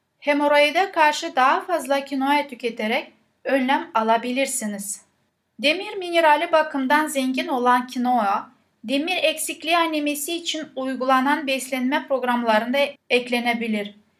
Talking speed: 95 wpm